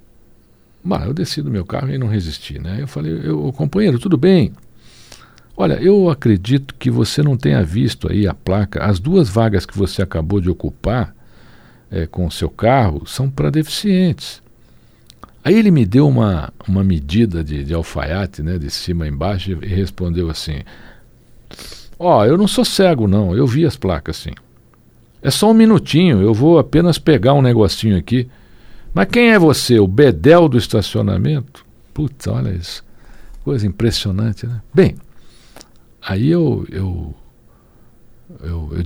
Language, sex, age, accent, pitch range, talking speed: Portuguese, male, 60-79, Brazilian, 95-150 Hz, 160 wpm